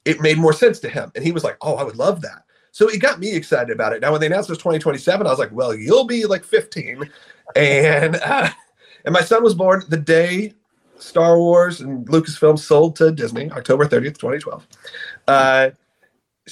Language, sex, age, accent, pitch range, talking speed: English, male, 40-59, American, 135-175 Hz, 205 wpm